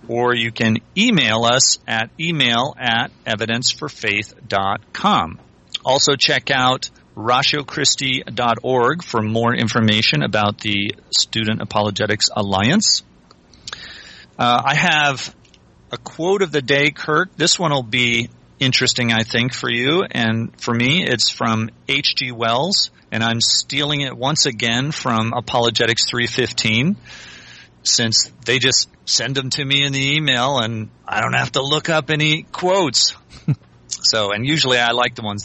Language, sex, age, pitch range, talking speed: English, male, 40-59, 110-145 Hz, 135 wpm